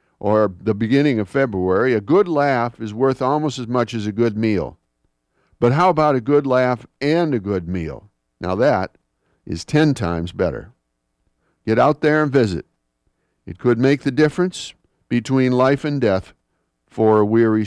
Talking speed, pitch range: 170 wpm, 100-135 Hz